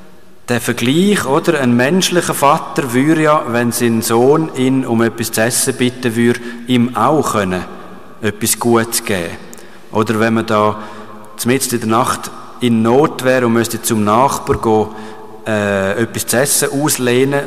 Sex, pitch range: male, 115-135 Hz